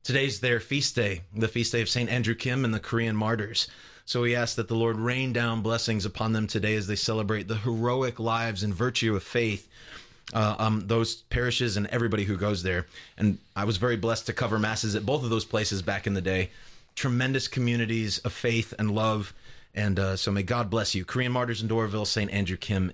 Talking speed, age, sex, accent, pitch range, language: 215 wpm, 30-49, male, American, 105-125 Hz, English